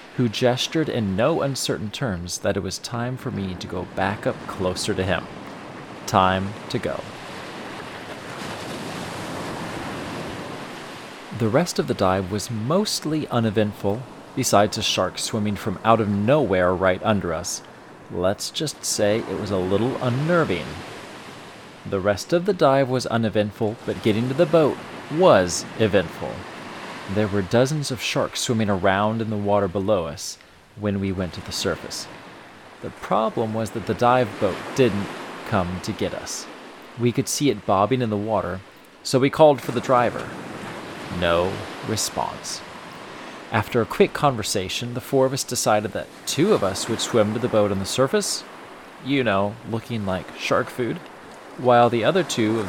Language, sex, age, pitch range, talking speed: English, male, 30-49, 100-125 Hz, 160 wpm